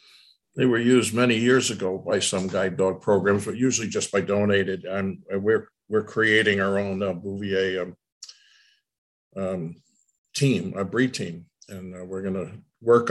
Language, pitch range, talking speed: English, 95-120 Hz, 160 wpm